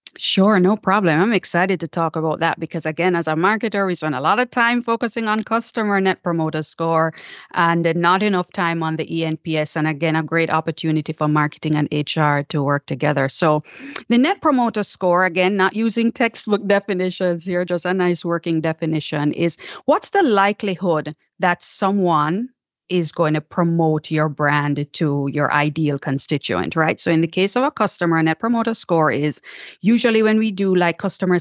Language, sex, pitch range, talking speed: English, female, 155-195 Hz, 180 wpm